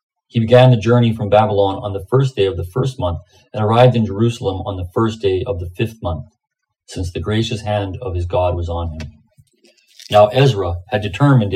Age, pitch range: 40-59, 95-125 Hz